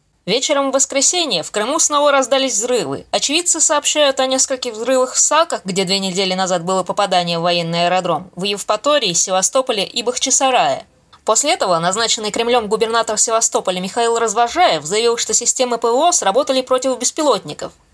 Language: Russian